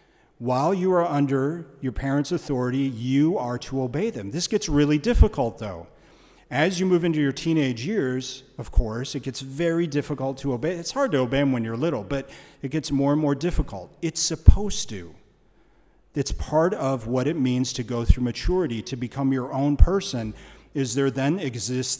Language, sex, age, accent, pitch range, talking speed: English, male, 40-59, American, 120-150 Hz, 190 wpm